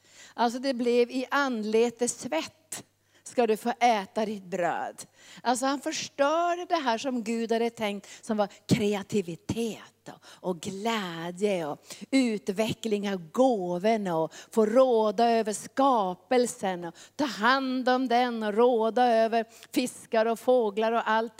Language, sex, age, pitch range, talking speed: Swedish, female, 40-59, 185-230 Hz, 135 wpm